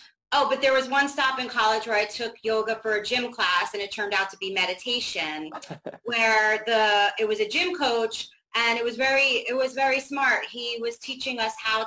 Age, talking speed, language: 30-49, 215 wpm, English